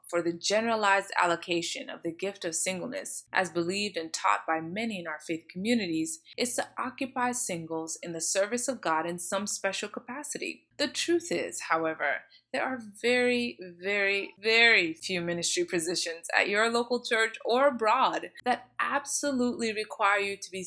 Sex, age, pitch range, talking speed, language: female, 20-39, 175-245 Hz, 165 wpm, English